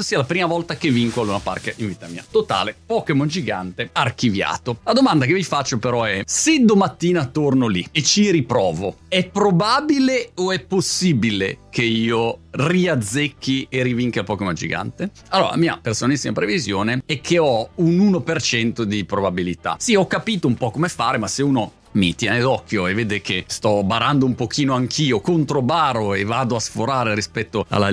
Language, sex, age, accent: Italian, male, 30-49, native